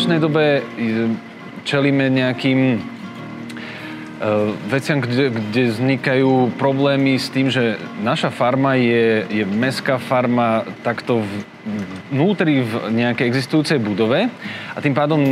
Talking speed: 120 wpm